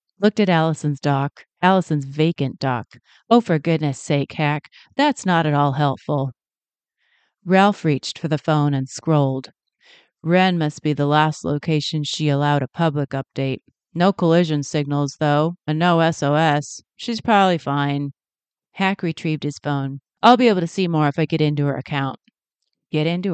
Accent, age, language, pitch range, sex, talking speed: American, 30-49, English, 145-180 Hz, female, 160 wpm